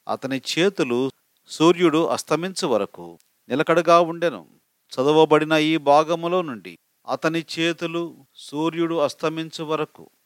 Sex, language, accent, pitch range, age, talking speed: male, Telugu, native, 145-175 Hz, 40-59, 95 wpm